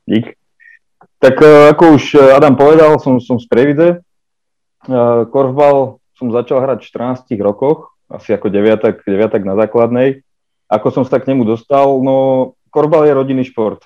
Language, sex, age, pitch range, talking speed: Slovak, male, 30-49, 105-130 Hz, 145 wpm